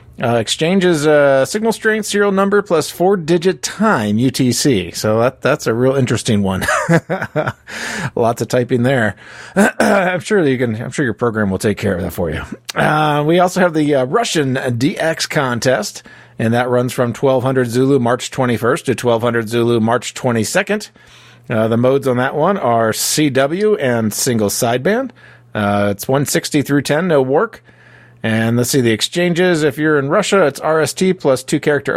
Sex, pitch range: male, 120-155 Hz